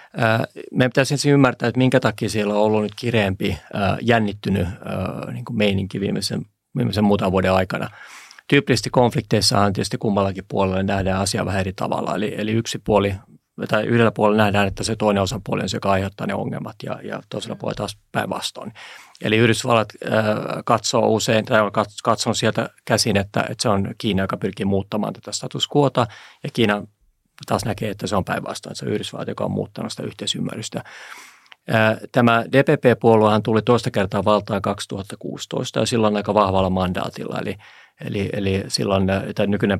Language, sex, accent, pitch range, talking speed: Finnish, male, native, 100-115 Hz, 160 wpm